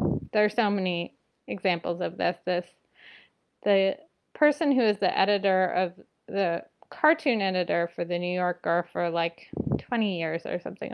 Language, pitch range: English, 180-225 Hz